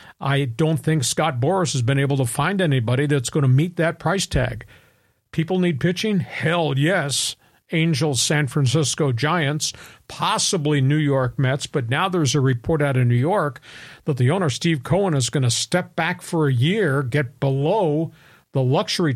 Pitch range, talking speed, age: 135-165 Hz, 180 wpm, 50-69